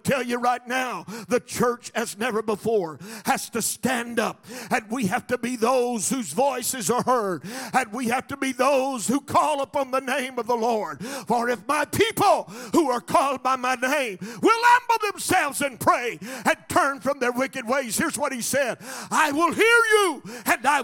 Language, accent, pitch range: English, American, 185-280 Hz